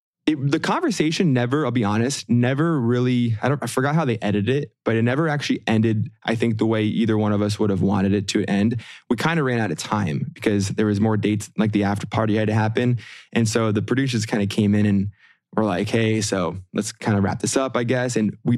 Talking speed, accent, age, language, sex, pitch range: 245 wpm, American, 20-39, English, male, 100-120 Hz